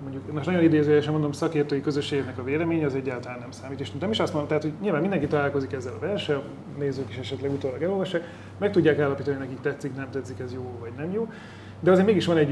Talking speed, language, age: 240 wpm, Hungarian, 30-49